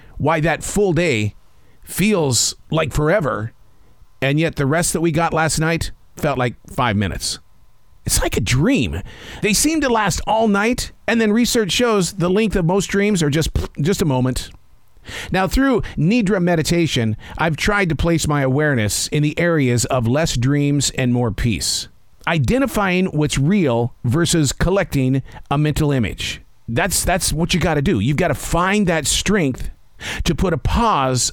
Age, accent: 50-69, American